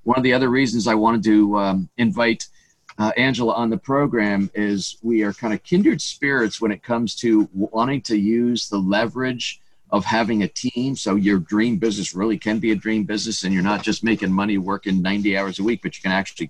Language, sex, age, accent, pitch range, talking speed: English, male, 50-69, American, 100-120 Hz, 220 wpm